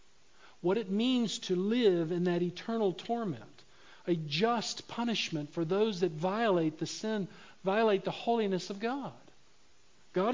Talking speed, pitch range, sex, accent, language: 140 wpm, 145-220 Hz, male, American, English